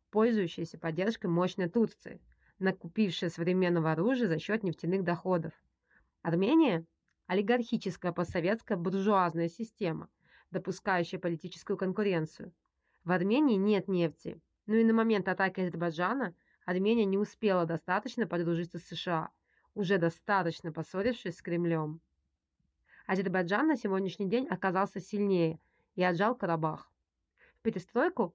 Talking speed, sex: 110 wpm, female